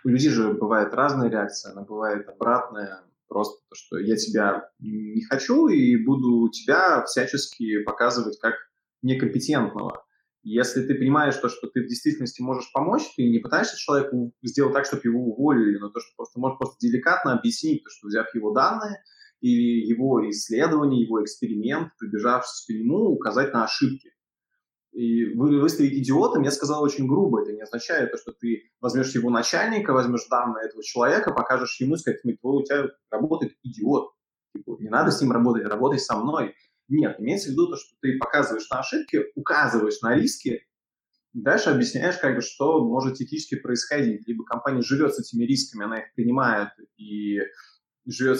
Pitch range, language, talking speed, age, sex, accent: 115-145 Hz, Russian, 165 wpm, 20-39, male, native